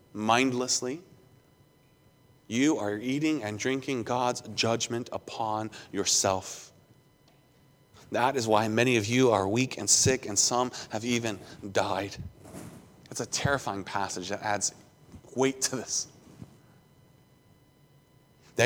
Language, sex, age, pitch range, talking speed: English, male, 30-49, 115-145 Hz, 115 wpm